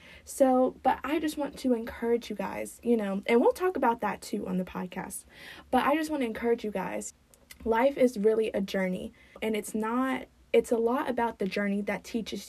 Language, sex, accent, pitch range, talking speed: English, female, American, 195-240 Hz, 210 wpm